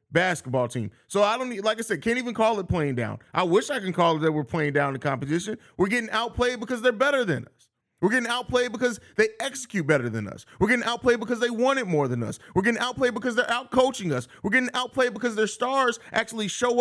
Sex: male